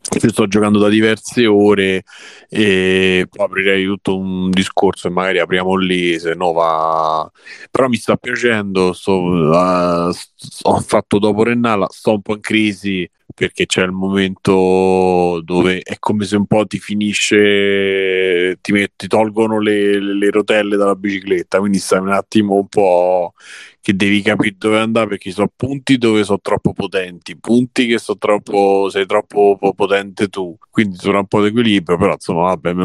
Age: 30-49